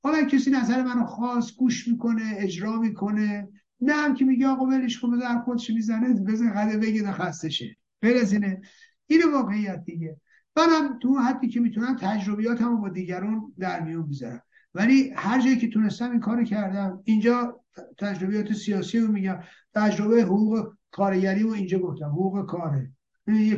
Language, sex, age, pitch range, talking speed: Persian, male, 50-69, 195-240 Hz, 160 wpm